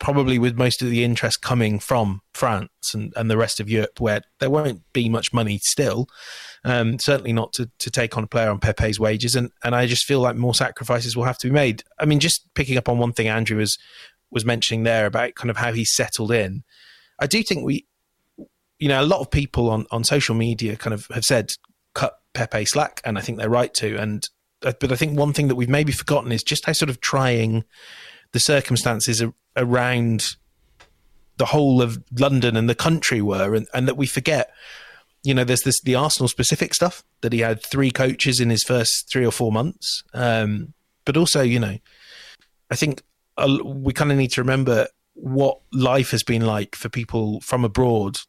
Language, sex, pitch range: English, male, 115-130 Hz